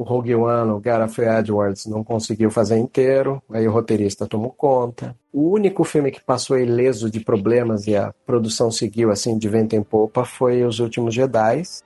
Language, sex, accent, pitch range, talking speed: Portuguese, male, Brazilian, 110-130 Hz, 180 wpm